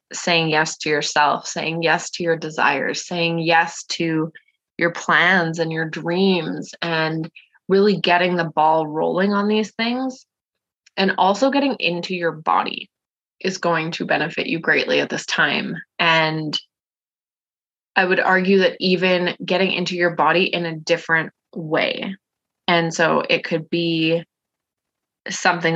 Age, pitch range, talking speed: 20-39, 160-180 Hz, 140 wpm